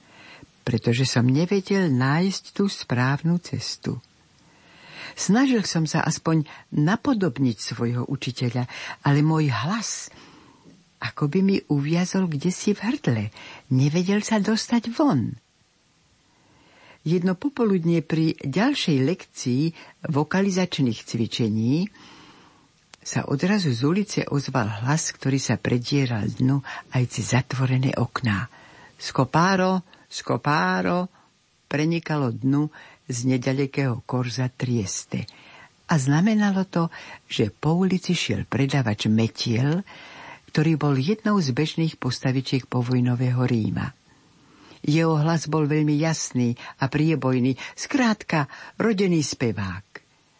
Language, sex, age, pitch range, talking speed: Slovak, female, 60-79, 125-170 Hz, 100 wpm